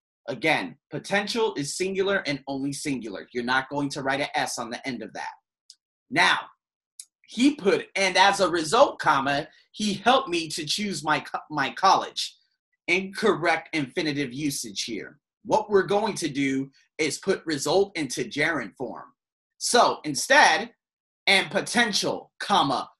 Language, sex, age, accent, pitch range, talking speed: English, male, 30-49, American, 145-205 Hz, 145 wpm